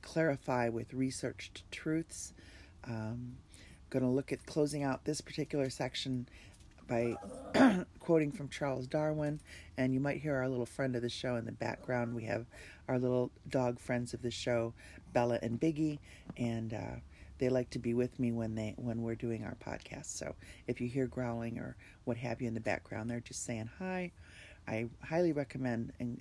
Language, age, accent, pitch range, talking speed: English, 40-59, American, 105-130 Hz, 180 wpm